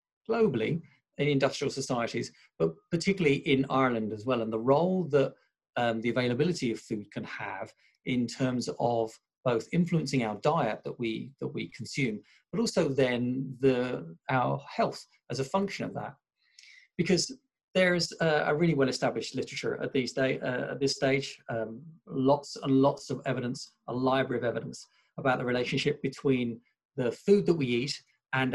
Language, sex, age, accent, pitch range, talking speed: English, male, 40-59, British, 125-150 Hz, 165 wpm